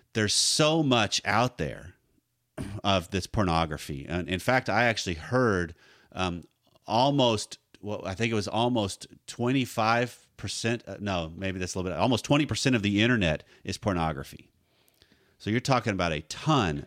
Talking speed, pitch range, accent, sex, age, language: 155 wpm, 90-115 Hz, American, male, 40-59, English